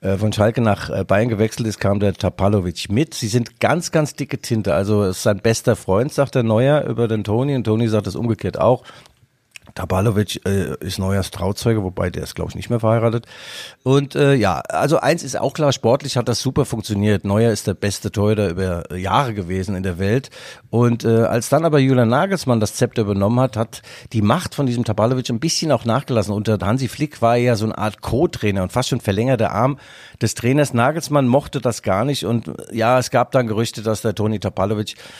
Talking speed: 205 wpm